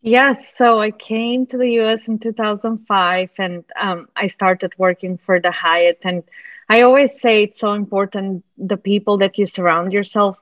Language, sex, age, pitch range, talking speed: English, female, 20-39, 185-225 Hz, 175 wpm